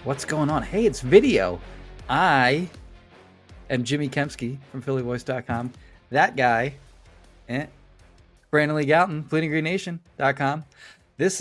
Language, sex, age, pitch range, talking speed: English, male, 30-49, 105-140 Hz, 105 wpm